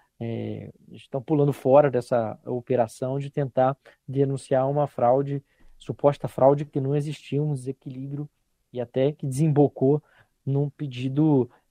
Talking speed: 120 wpm